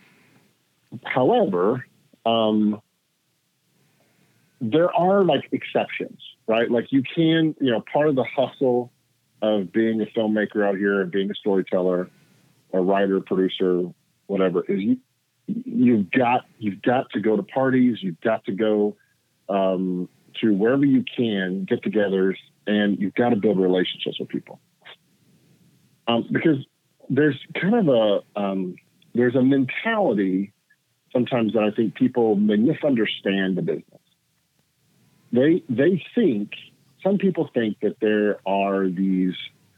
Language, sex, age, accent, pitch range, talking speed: English, male, 40-59, American, 95-140 Hz, 130 wpm